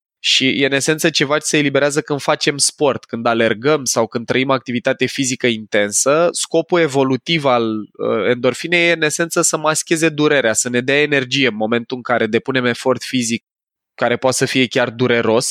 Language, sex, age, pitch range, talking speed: Romanian, male, 20-39, 120-155 Hz, 180 wpm